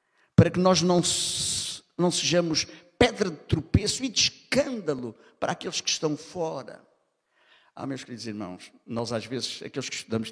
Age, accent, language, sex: 60-79, Brazilian, Portuguese, male